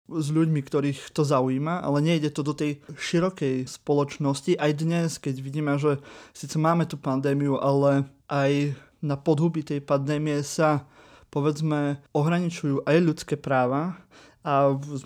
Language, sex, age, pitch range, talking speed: Slovak, male, 20-39, 140-155 Hz, 140 wpm